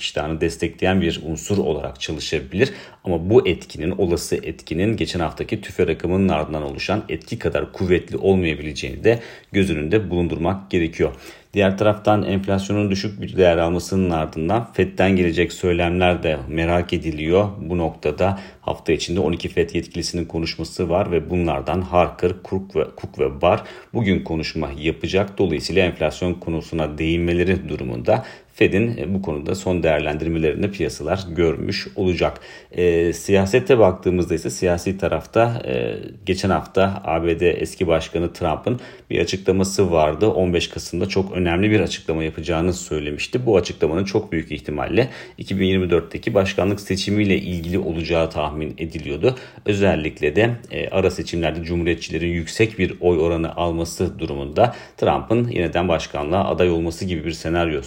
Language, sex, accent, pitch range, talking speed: Turkish, male, native, 80-95 Hz, 130 wpm